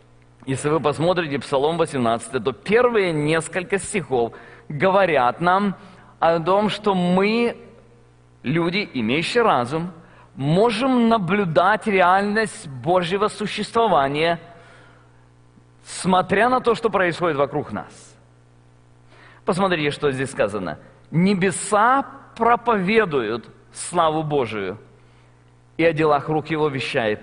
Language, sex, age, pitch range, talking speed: Russian, male, 40-59, 135-200 Hz, 95 wpm